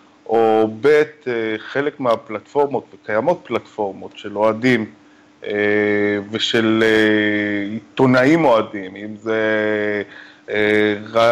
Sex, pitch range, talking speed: male, 110-125 Hz, 75 wpm